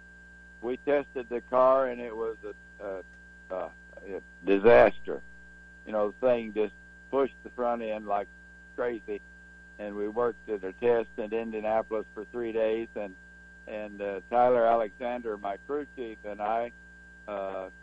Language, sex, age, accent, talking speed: English, male, 60-79, American, 150 wpm